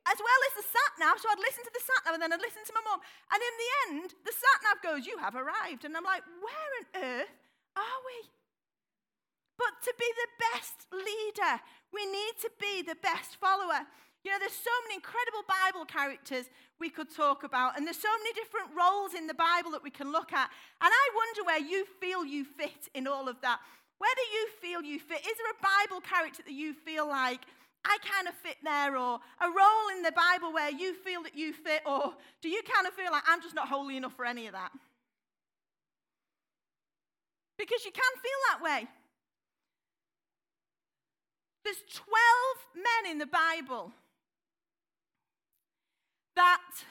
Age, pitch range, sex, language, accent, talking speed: 30-49, 305-425 Hz, female, English, British, 190 wpm